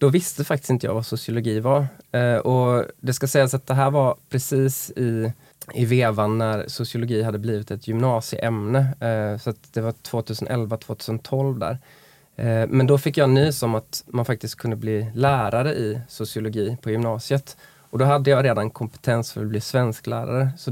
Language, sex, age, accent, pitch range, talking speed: Swedish, male, 20-39, native, 110-135 Hz, 180 wpm